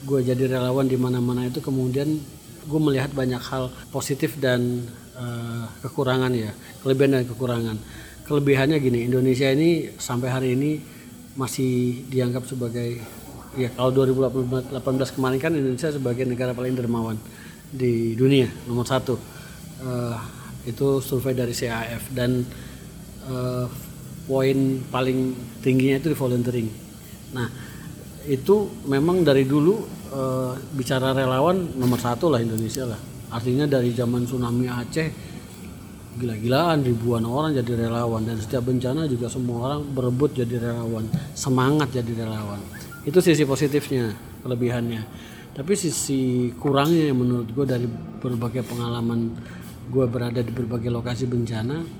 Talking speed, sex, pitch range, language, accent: 125 wpm, male, 120-135 Hz, Indonesian, native